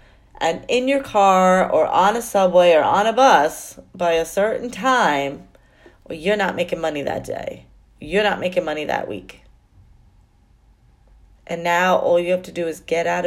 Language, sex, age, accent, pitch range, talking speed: English, female, 30-49, American, 150-205 Hz, 175 wpm